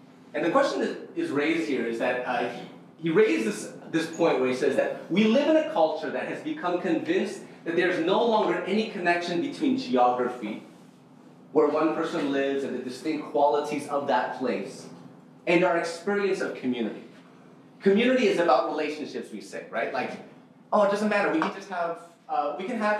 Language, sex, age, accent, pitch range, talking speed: English, male, 30-49, American, 155-225 Hz, 190 wpm